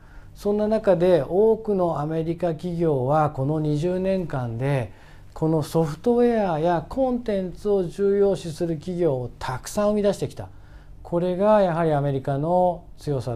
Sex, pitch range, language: male, 130-175 Hz, Japanese